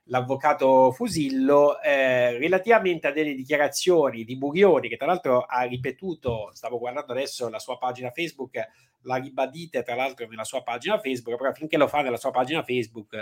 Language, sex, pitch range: Italian, male, 120-155 Hz